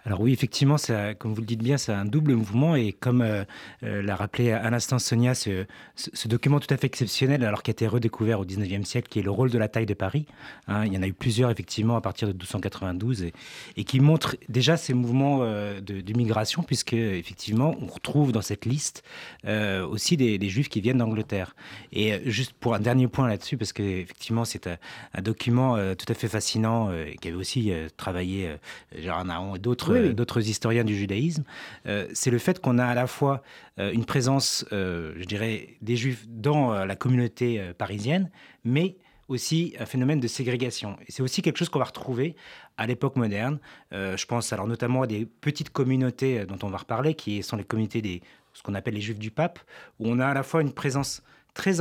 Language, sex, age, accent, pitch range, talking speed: French, male, 30-49, French, 105-130 Hz, 215 wpm